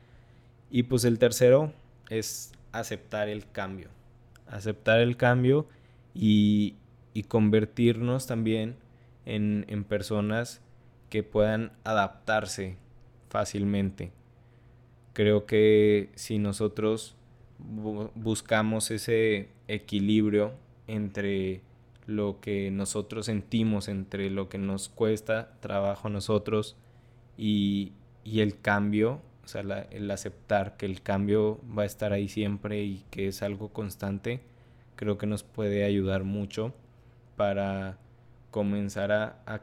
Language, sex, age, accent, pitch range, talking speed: Spanish, male, 20-39, Mexican, 100-120 Hz, 110 wpm